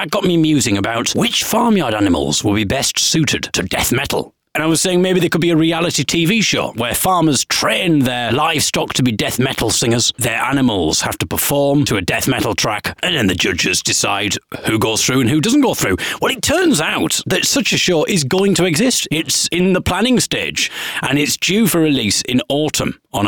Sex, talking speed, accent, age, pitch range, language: male, 220 wpm, British, 40-59, 120-175 Hz, English